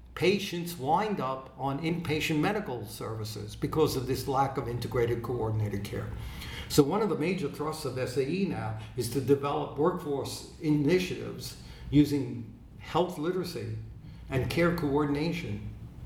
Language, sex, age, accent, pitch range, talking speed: English, male, 60-79, American, 120-155 Hz, 130 wpm